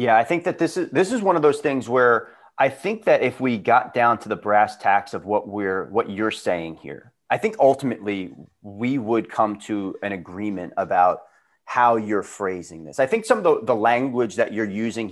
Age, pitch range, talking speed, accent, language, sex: 30-49, 105-125 Hz, 220 wpm, American, English, male